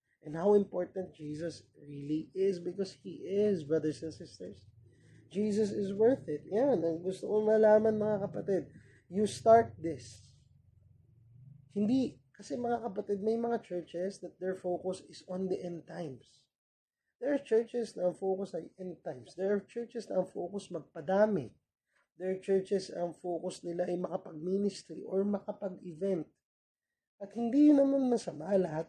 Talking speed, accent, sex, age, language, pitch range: 140 wpm, Filipino, male, 20-39, English, 165-215 Hz